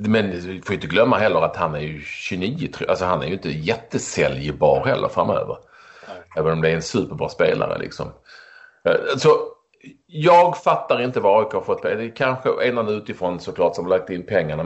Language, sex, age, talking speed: English, male, 30-49, 190 wpm